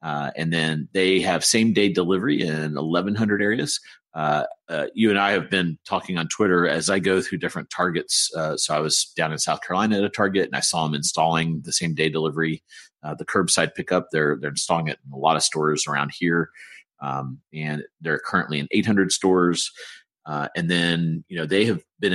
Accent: American